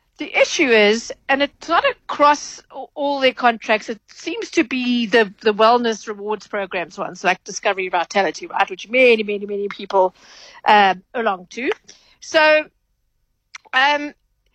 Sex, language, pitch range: female, English, 205-260 Hz